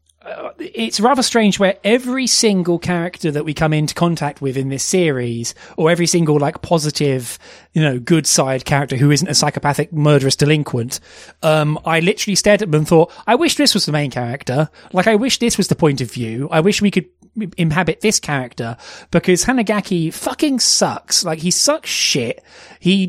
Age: 30-49